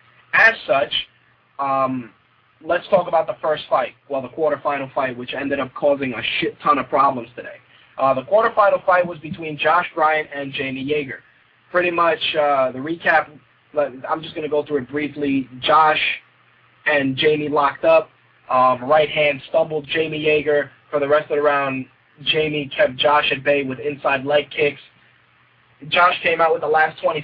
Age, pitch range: 20-39, 135-155 Hz